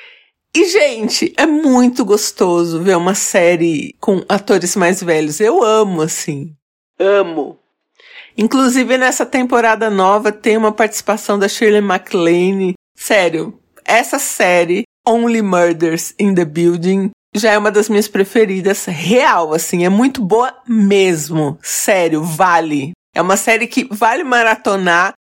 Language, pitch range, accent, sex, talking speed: Portuguese, 180-250 Hz, Brazilian, female, 130 wpm